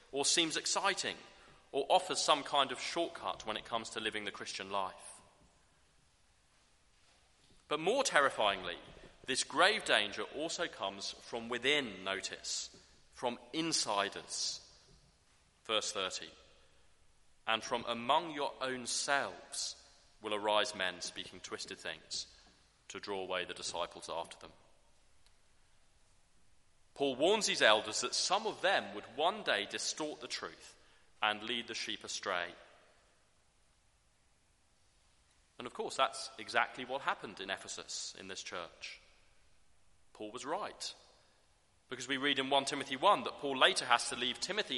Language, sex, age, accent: English, male, 30-49, British